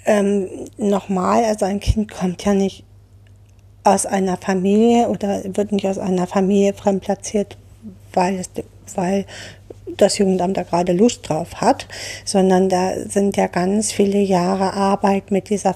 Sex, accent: female, German